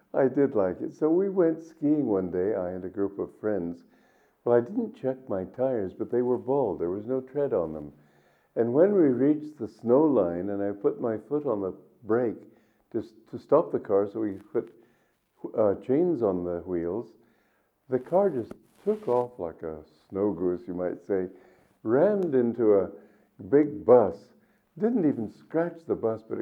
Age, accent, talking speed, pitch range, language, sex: 60-79, American, 190 wpm, 105-155 Hz, English, male